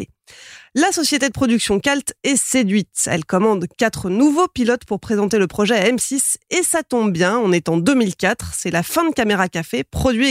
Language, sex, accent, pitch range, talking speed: French, female, French, 195-270 Hz, 190 wpm